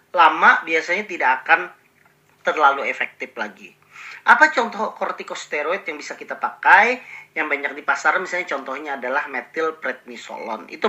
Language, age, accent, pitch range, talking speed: Indonesian, 40-59, native, 140-205 Hz, 125 wpm